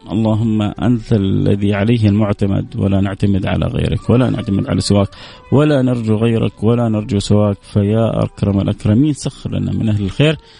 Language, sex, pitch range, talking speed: English, male, 100-125 Hz, 155 wpm